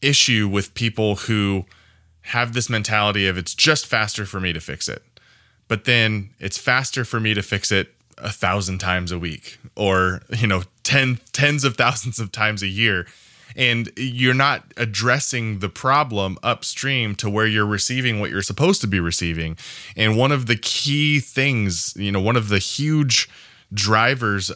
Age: 20-39